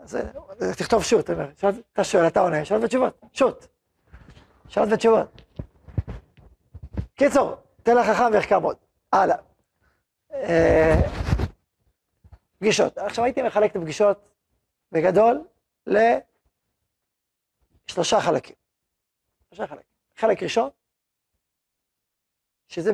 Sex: male